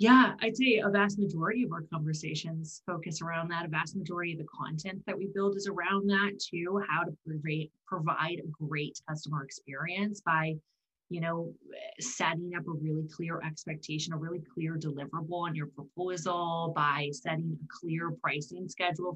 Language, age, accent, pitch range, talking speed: English, 20-39, American, 160-195 Hz, 170 wpm